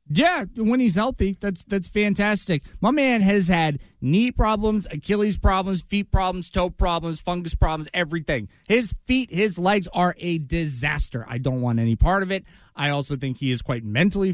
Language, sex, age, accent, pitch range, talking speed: English, male, 20-39, American, 140-185 Hz, 180 wpm